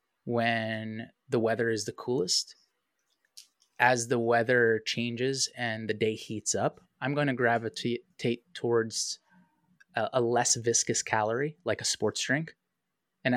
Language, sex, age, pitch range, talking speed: English, male, 20-39, 110-130 Hz, 130 wpm